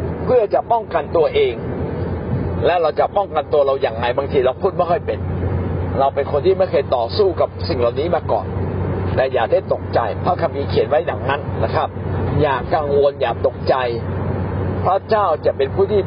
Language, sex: Thai, male